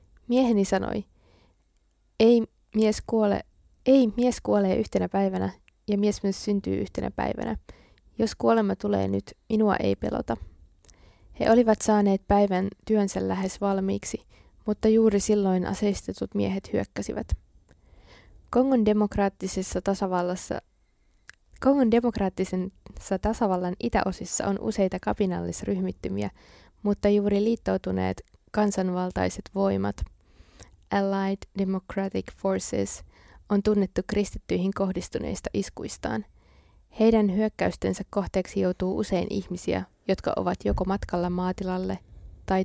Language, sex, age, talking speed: Finnish, female, 20-39, 100 wpm